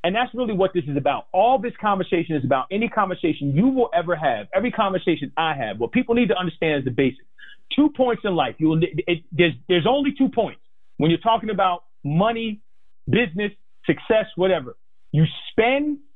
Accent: American